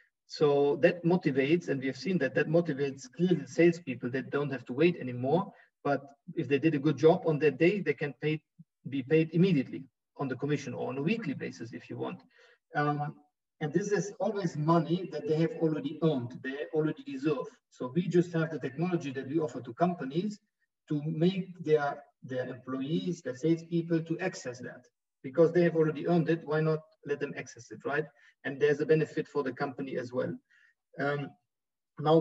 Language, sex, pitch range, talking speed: English, male, 140-170 Hz, 195 wpm